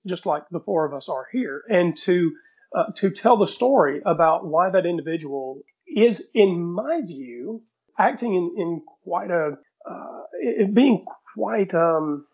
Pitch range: 150-195 Hz